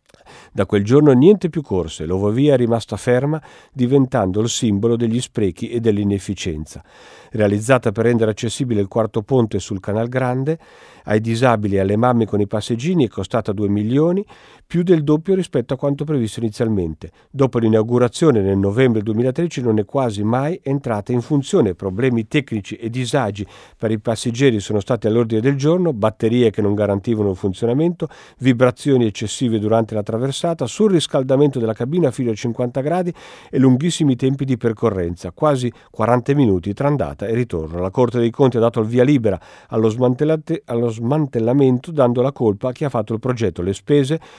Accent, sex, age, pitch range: native, male, 50-69, 110-140 Hz